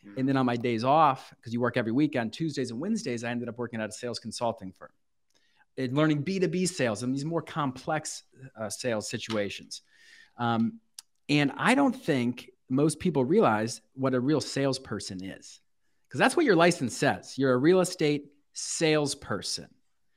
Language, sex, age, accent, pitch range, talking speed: English, male, 40-59, American, 125-165 Hz, 175 wpm